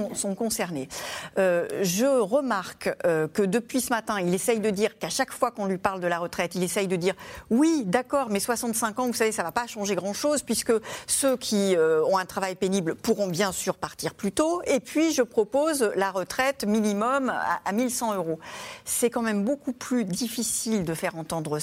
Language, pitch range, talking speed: French, 185-245 Hz, 210 wpm